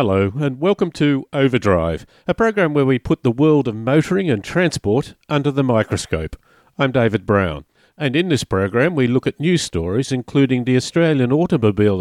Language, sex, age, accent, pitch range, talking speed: English, male, 50-69, Australian, 110-155 Hz, 175 wpm